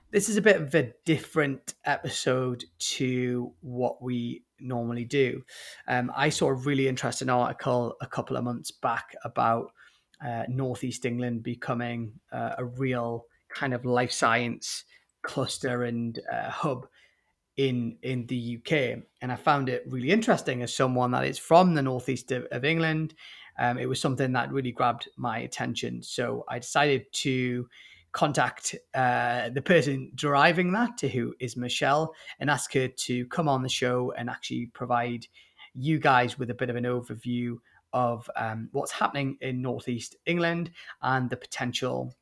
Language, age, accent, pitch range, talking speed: English, 30-49, British, 120-140 Hz, 160 wpm